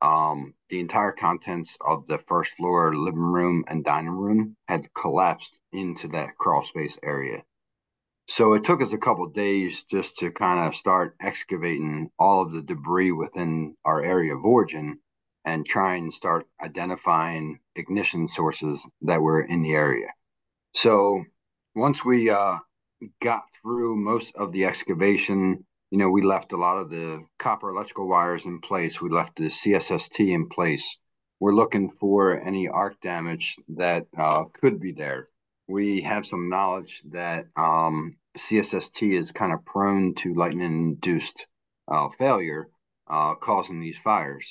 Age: 40-59